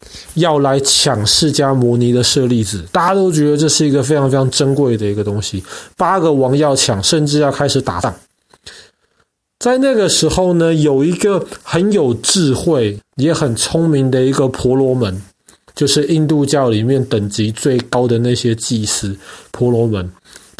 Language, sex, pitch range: Chinese, male, 120-155 Hz